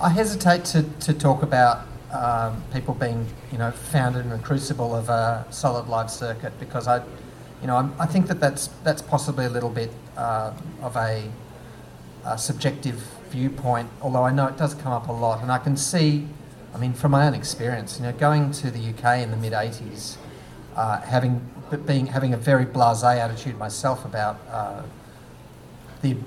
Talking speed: 175 wpm